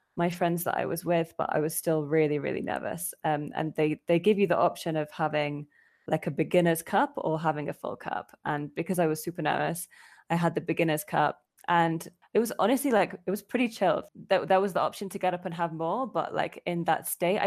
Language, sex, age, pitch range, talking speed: English, female, 10-29, 155-185 Hz, 235 wpm